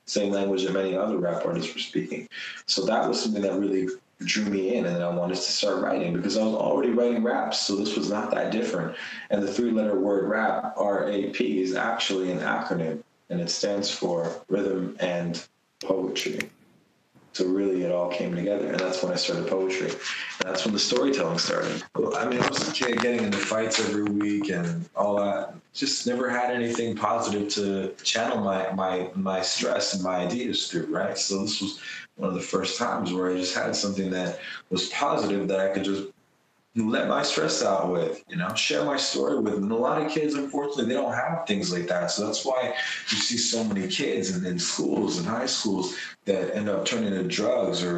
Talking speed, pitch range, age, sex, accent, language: 210 wpm, 90-105 Hz, 20-39, male, American, English